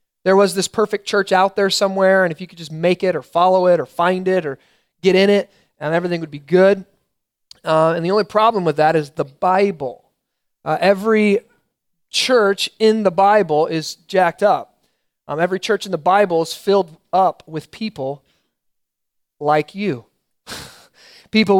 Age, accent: 30-49, American